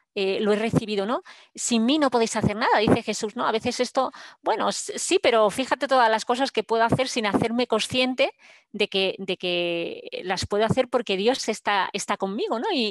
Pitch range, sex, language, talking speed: 200-260 Hz, female, Spanish, 205 wpm